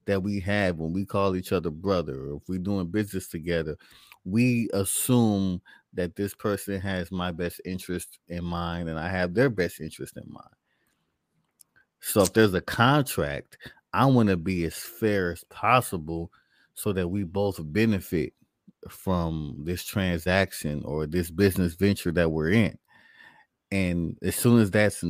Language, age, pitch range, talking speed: English, 30-49, 85-105 Hz, 160 wpm